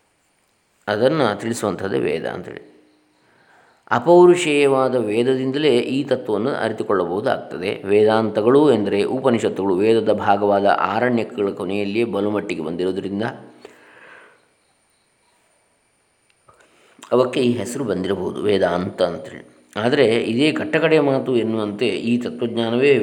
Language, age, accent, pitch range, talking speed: Kannada, 20-39, native, 100-125 Hz, 80 wpm